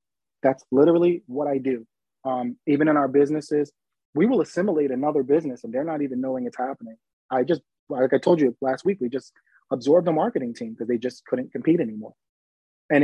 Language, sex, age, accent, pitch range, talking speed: English, male, 30-49, American, 130-155 Hz, 200 wpm